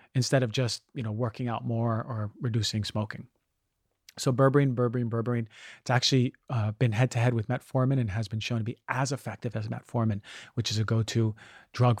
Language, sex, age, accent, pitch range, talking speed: English, male, 40-59, American, 110-135 Hz, 195 wpm